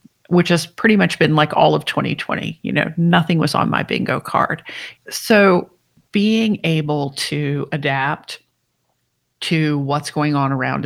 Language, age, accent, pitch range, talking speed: English, 40-59, American, 155-175 Hz, 150 wpm